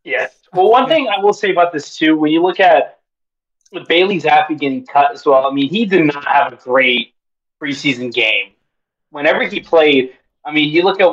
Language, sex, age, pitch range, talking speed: English, male, 20-39, 130-170 Hz, 205 wpm